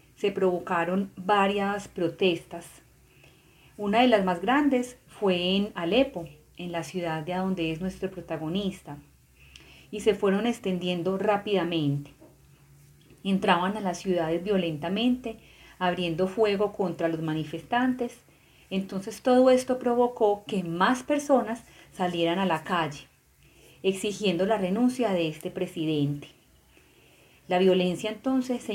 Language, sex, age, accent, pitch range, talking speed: Spanish, female, 30-49, Colombian, 170-215 Hz, 115 wpm